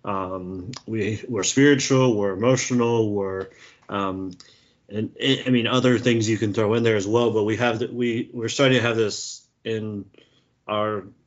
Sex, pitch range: male, 100-125 Hz